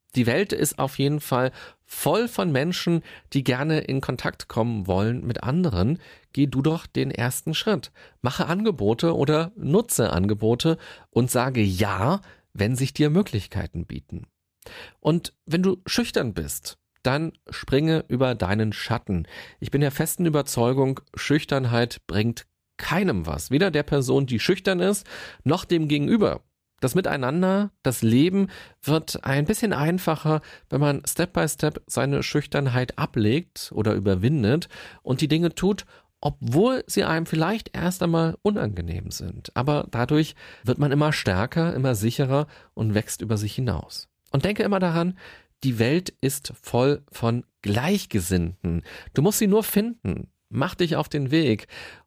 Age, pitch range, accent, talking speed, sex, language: 40-59, 120-170 Hz, German, 145 wpm, male, German